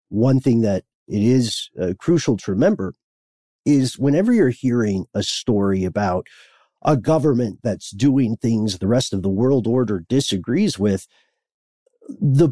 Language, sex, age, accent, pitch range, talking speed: English, male, 40-59, American, 105-135 Hz, 145 wpm